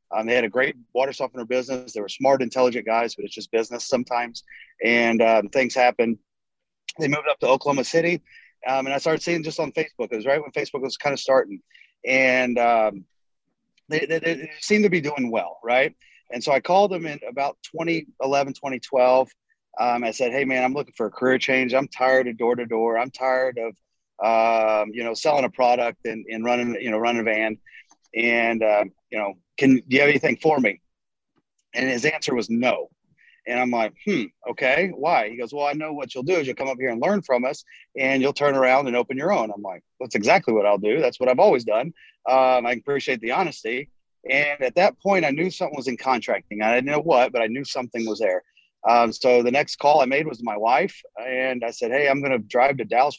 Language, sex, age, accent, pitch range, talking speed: English, male, 30-49, American, 120-140 Hz, 230 wpm